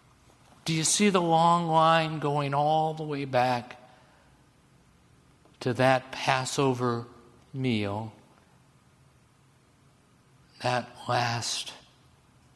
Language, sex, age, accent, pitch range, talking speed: English, male, 60-79, American, 110-130 Hz, 80 wpm